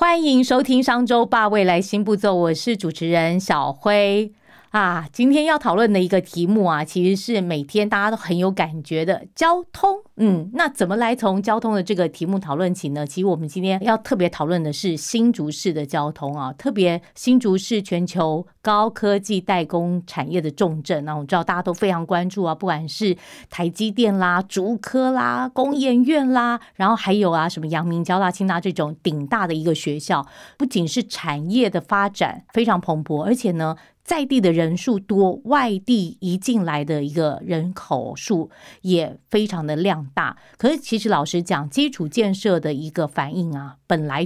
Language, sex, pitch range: Chinese, female, 165-225 Hz